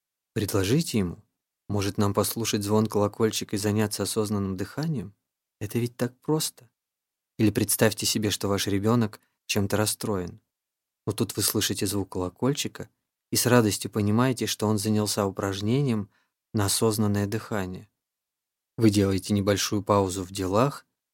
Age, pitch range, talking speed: 20-39, 100-115 Hz, 130 wpm